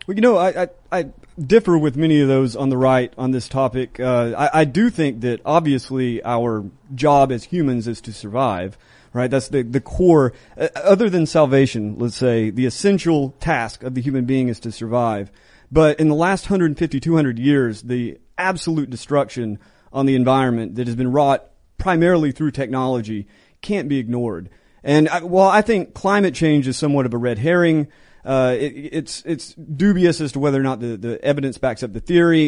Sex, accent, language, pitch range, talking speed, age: male, American, English, 125-165 Hz, 190 wpm, 30-49